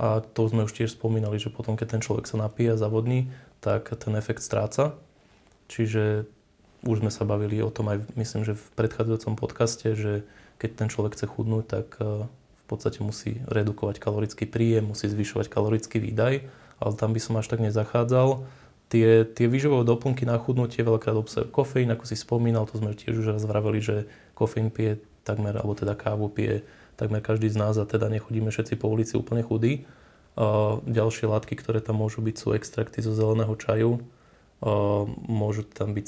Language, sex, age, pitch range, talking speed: Slovak, male, 20-39, 110-115 Hz, 180 wpm